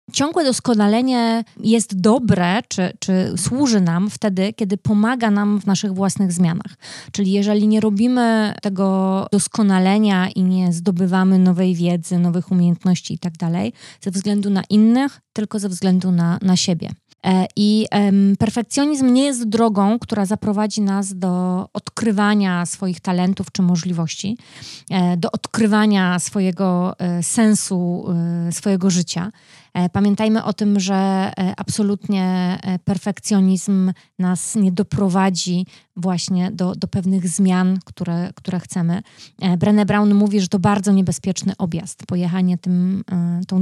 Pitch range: 180-210 Hz